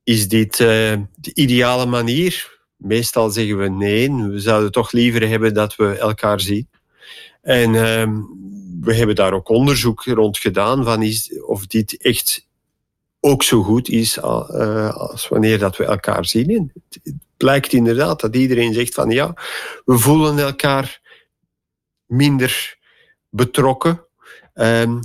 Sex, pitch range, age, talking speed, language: male, 105-125 Hz, 50-69, 145 wpm, Dutch